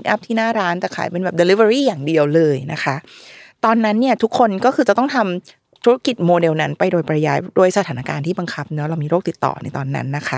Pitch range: 170-230 Hz